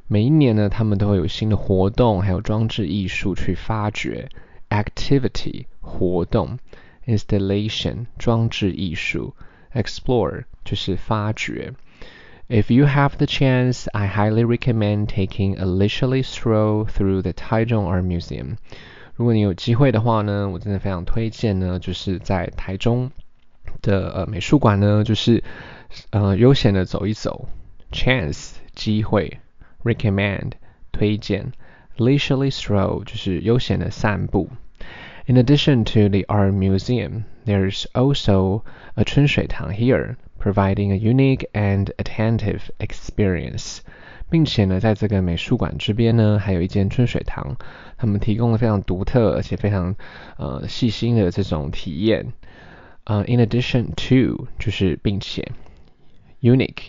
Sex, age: male, 20-39